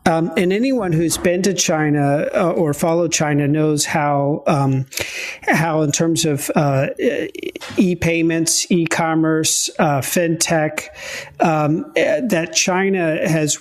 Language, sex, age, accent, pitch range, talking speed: English, male, 50-69, American, 150-180 Hz, 130 wpm